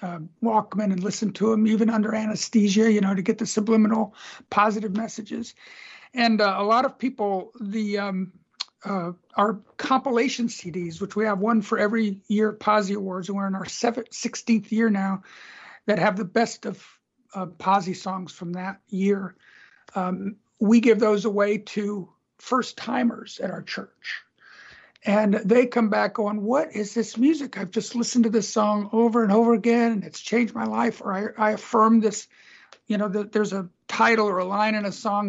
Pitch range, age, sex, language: 200-225 Hz, 50-69, male, English